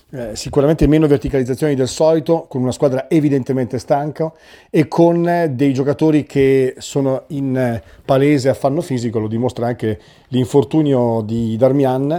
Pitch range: 125-145 Hz